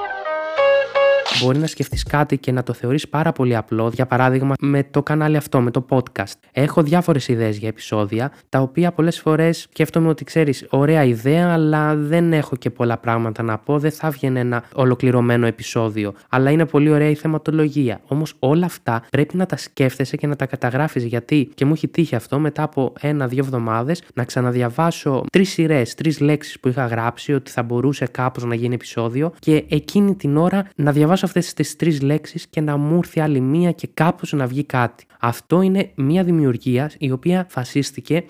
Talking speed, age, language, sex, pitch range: 185 wpm, 20-39, Greek, male, 125-160 Hz